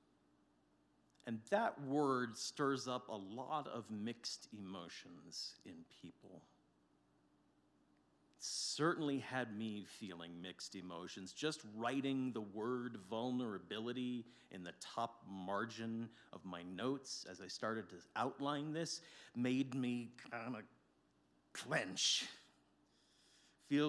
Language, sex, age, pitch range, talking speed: English, male, 40-59, 90-130 Hz, 105 wpm